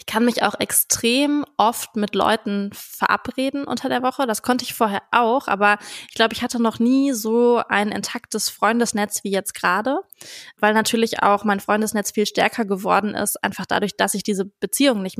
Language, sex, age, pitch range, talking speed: German, female, 20-39, 205-245 Hz, 185 wpm